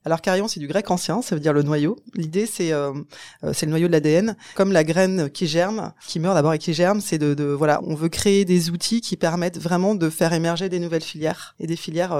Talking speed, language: 250 wpm, French